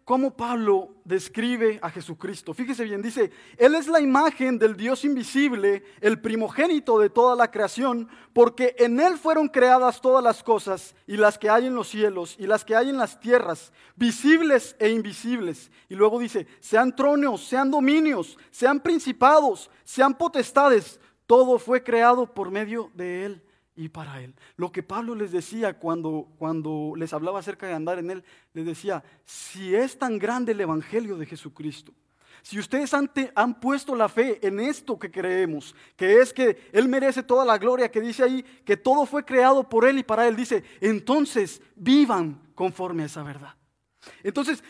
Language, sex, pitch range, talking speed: English, male, 195-260 Hz, 175 wpm